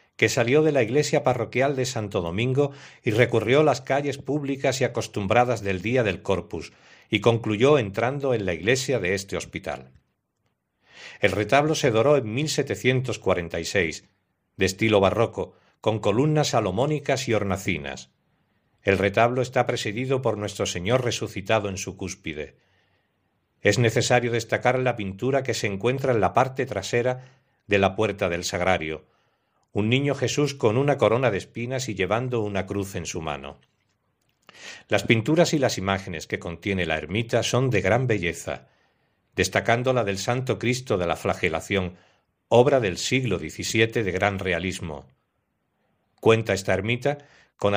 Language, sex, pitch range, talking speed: Spanish, male, 100-130 Hz, 150 wpm